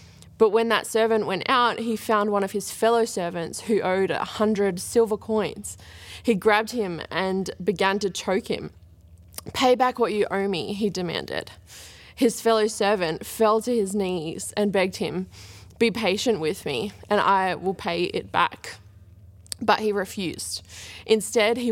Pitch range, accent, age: 180-215 Hz, Australian, 20-39